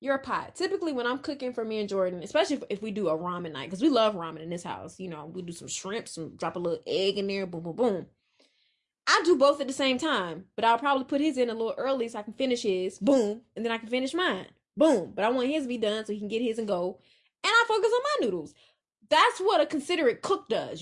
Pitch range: 215-300 Hz